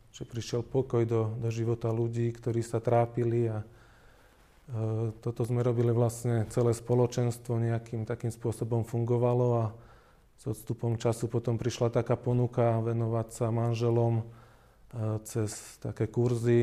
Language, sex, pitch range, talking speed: Slovak, male, 115-120 Hz, 125 wpm